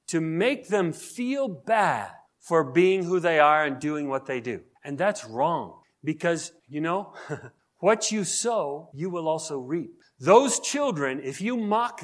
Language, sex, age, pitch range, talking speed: English, male, 40-59, 155-220 Hz, 165 wpm